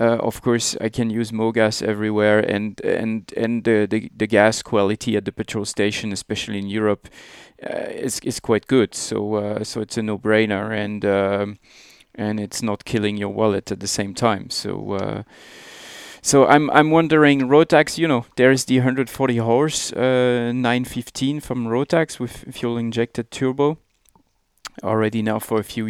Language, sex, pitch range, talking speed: English, male, 105-125 Hz, 170 wpm